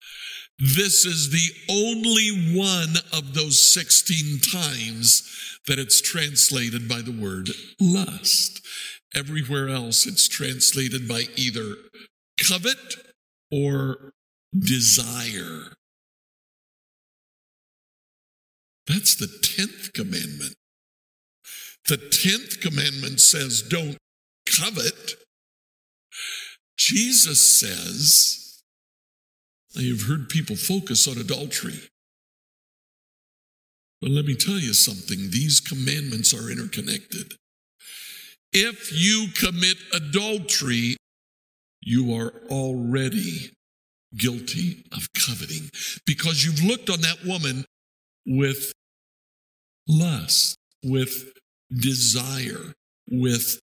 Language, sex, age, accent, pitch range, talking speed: English, male, 60-79, American, 125-185 Hz, 85 wpm